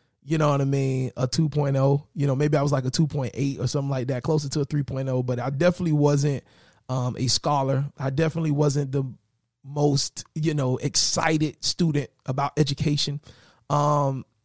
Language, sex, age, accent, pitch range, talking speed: English, male, 30-49, American, 125-155 Hz, 175 wpm